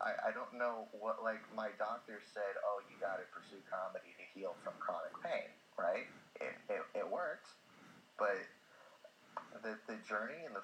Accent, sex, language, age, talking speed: American, male, English, 30-49, 170 wpm